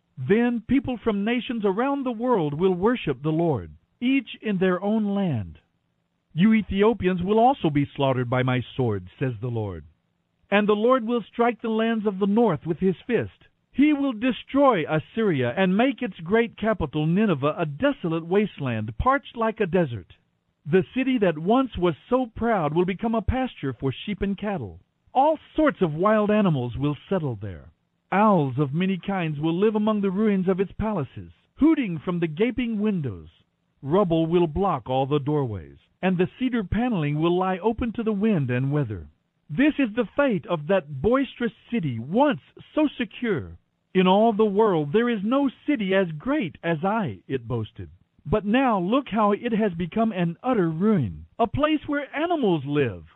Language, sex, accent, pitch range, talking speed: English, male, American, 150-230 Hz, 175 wpm